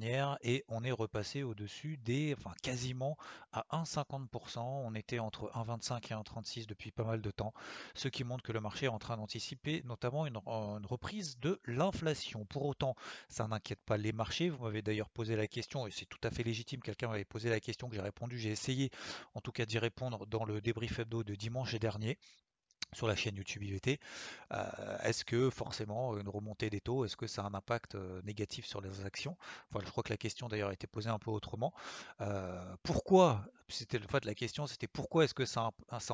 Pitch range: 105-125 Hz